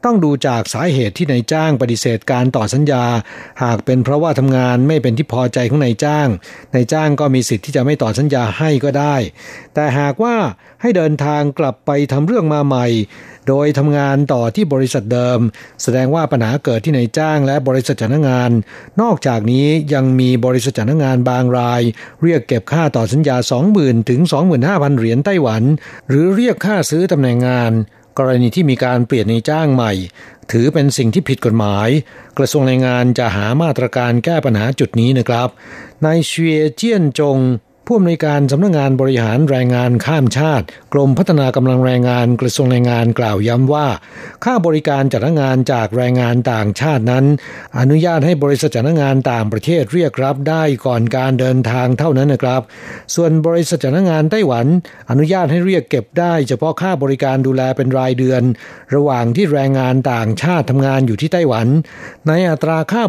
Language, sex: Thai, male